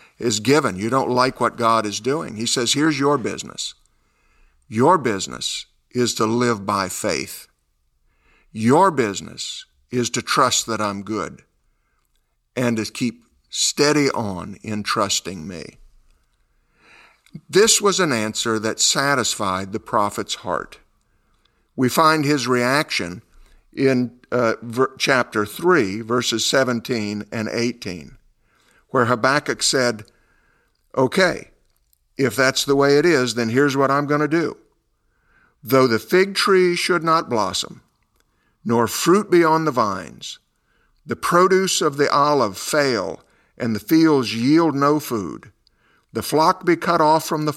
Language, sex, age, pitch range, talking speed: English, male, 50-69, 110-150 Hz, 135 wpm